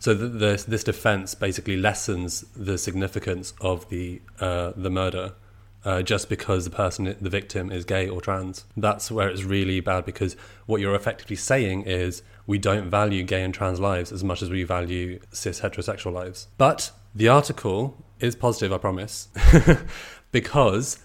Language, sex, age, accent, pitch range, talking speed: English, male, 30-49, British, 95-110 Hz, 170 wpm